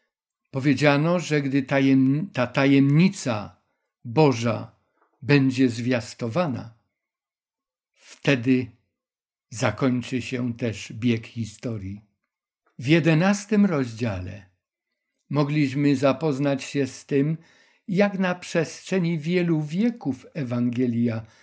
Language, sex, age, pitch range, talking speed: Polish, male, 60-79, 120-155 Hz, 80 wpm